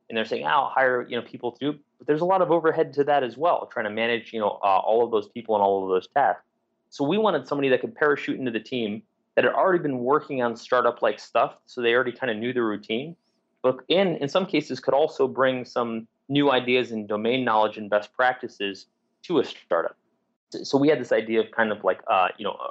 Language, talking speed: English, 250 wpm